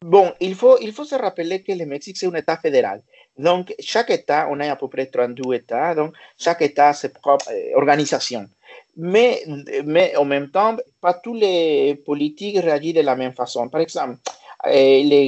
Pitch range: 130-190 Hz